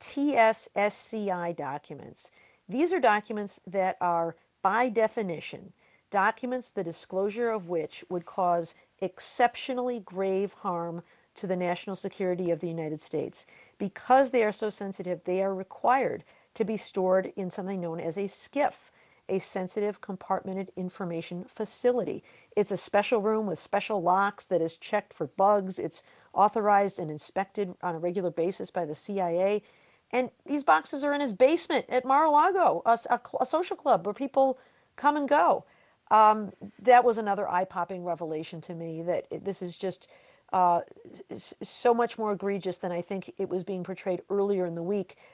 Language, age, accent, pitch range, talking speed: English, 50-69, American, 180-220 Hz, 160 wpm